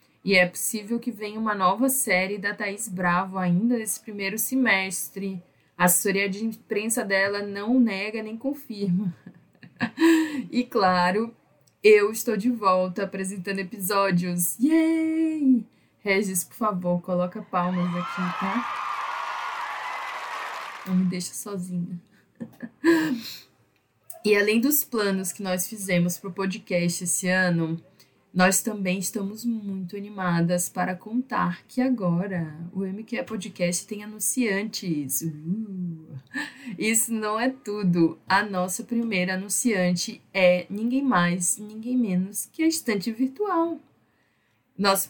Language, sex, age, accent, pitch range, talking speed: Portuguese, female, 20-39, Brazilian, 185-230 Hz, 115 wpm